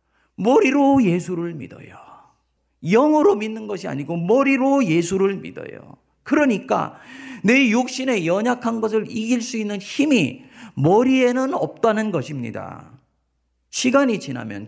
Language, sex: Korean, male